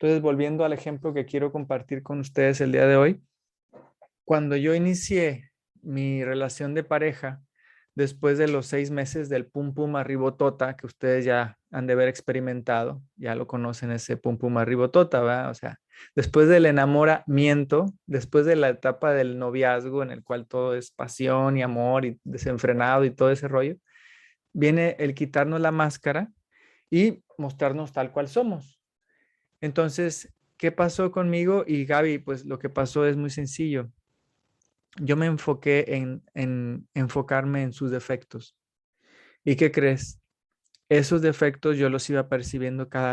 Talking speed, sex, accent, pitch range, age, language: 155 wpm, male, Mexican, 130-150 Hz, 20-39, Spanish